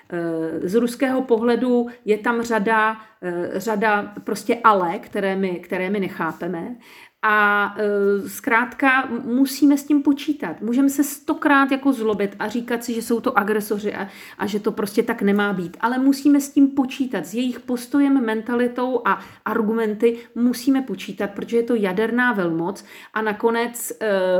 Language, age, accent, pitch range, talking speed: Czech, 40-59, native, 215-270 Hz, 150 wpm